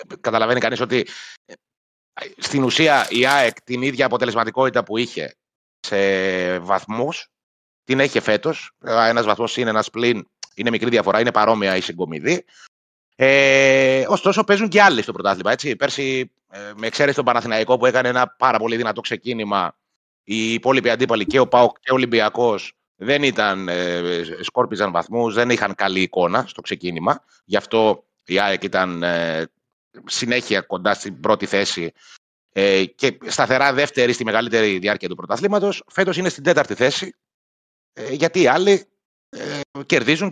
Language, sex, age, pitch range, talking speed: Greek, male, 30-49, 100-140 Hz, 145 wpm